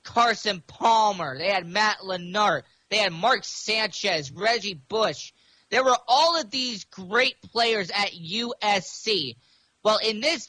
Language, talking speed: English, 135 wpm